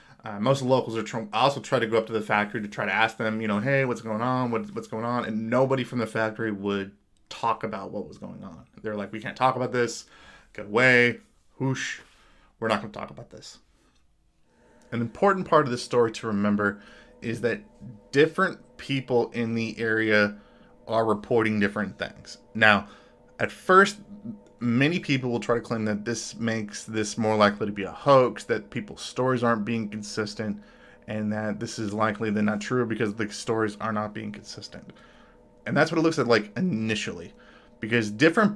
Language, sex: English, male